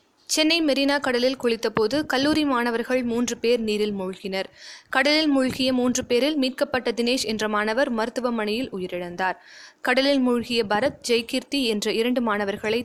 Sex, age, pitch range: female, 20-39, 215-275 Hz